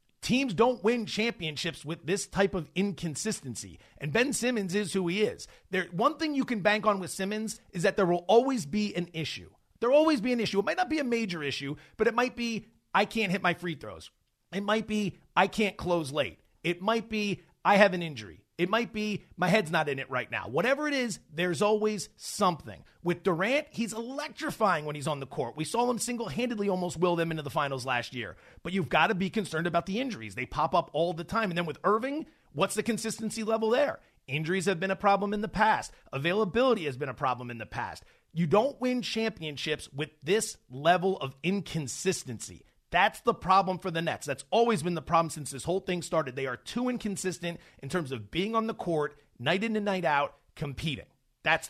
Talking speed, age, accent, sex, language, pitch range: 220 wpm, 30-49, American, male, English, 155-220 Hz